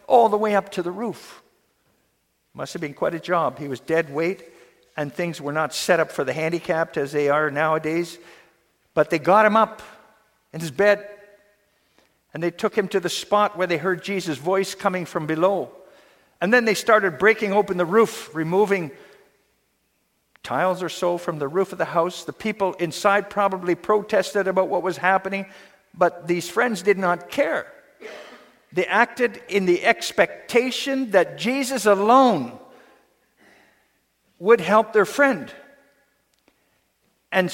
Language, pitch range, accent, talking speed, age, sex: English, 175-225 Hz, American, 160 wpm, 50-69, male